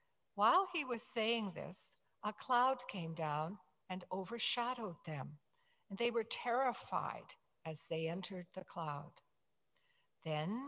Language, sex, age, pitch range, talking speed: English, female, 60-79, 170-250 Hz, 125 wpm